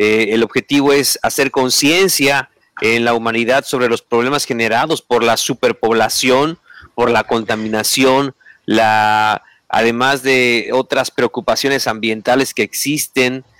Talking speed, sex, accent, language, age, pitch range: 120 wpm, male, Mexican, Spanish, 40-59, 120-145 Hz